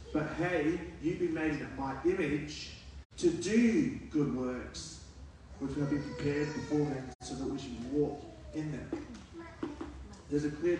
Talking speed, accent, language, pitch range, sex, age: 155 wpm, Australian, English, 130-160 Hz, male, 30-49